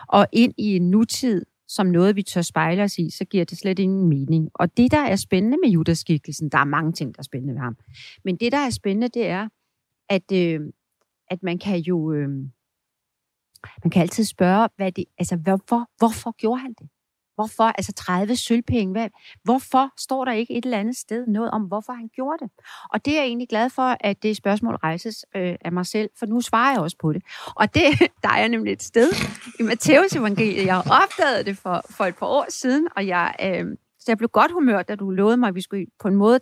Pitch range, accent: 180-240 Hz, native